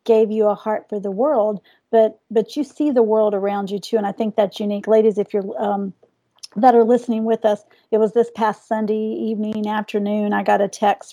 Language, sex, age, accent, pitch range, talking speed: English, female, 40-59, American, 210-245 Hz, 220 wpm